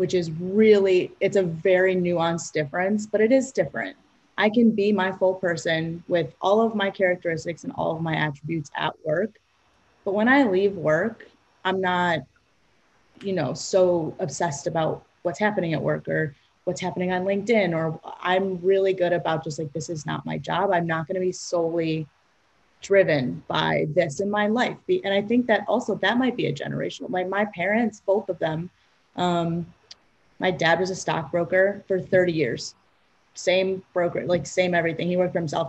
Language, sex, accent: English, female, American